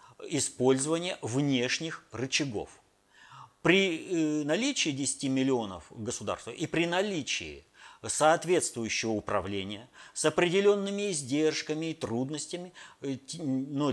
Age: 50-69